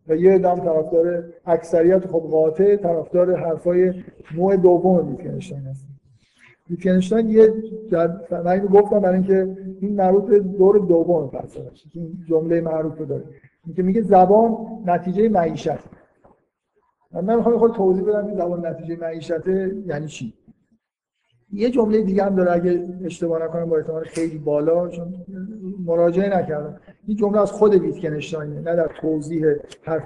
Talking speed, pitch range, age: 135 wpm, 160-195 Hz, 50-69